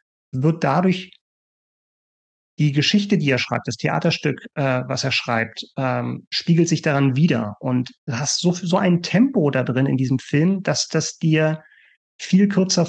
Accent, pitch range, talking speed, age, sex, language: German, 145-185 Hz, 165 wpm, 30-49, male, German